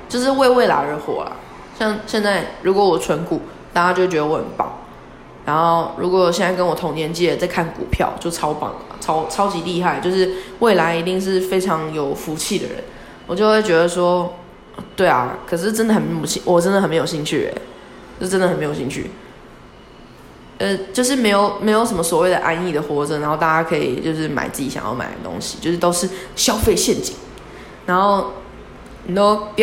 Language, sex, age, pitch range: Chinese, female, 20-39, 165-205 Hz